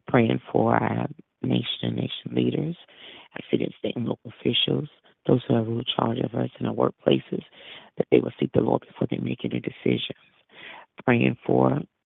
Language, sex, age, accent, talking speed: English, female, 40-59, American, 180 wpm